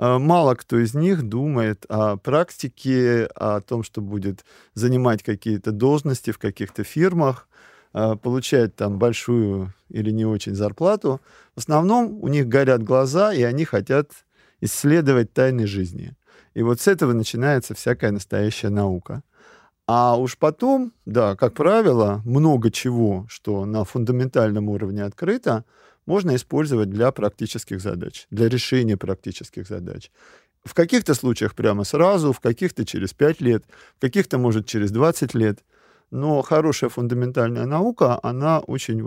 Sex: male